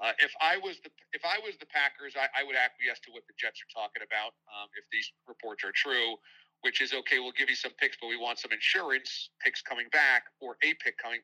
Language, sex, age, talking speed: English, male, 40-59, 250 wpm